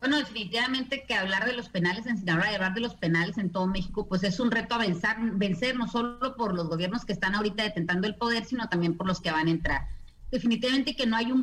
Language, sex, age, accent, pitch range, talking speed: Spanish, female, 40-59, Mexican, 205-245 Hz, 240 wpm